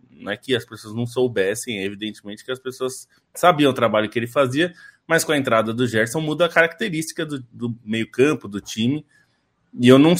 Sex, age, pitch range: male, 20-39, 115-155 Hz